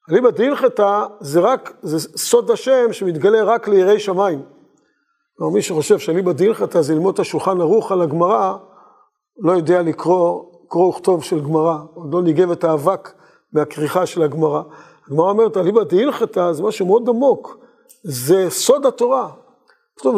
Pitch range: 175-270 Hz